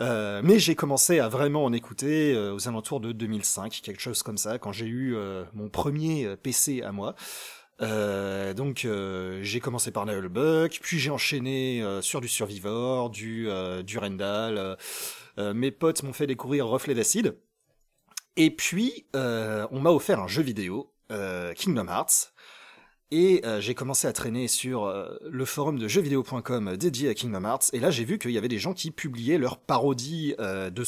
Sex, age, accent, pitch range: male, 30-49, French, 105-145 Hz